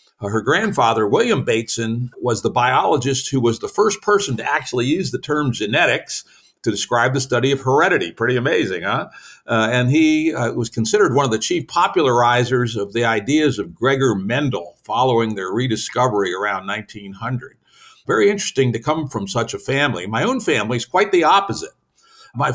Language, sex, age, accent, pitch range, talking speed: English, male, 60-79, American, 115-150 Hz, 175 wpm